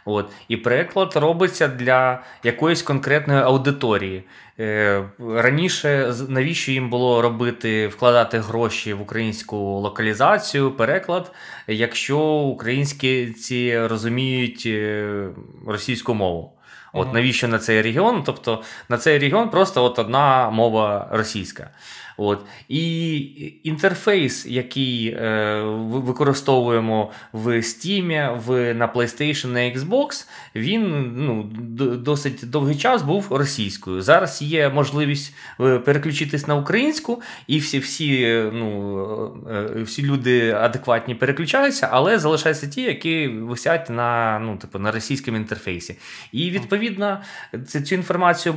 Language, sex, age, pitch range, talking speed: Ukrainian, male, 20-39, 115-150 Hz, 110 wpm